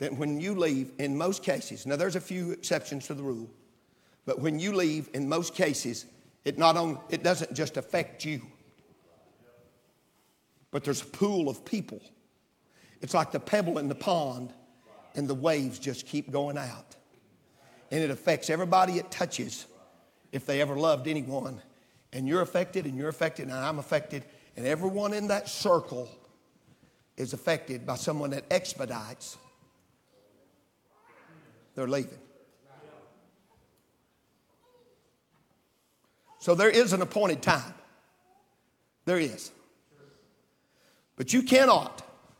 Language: English